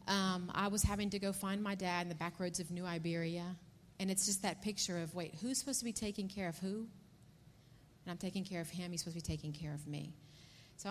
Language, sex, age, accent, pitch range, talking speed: English, female, 40-59, American, 165-200 Hz, 255 wpm